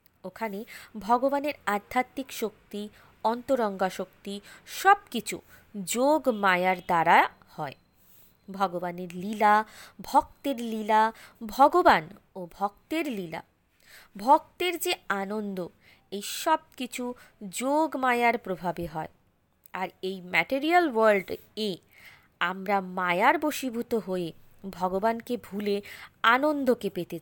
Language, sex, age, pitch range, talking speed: Bengali, female, 20-39, 190-270 Hz, 95 wpm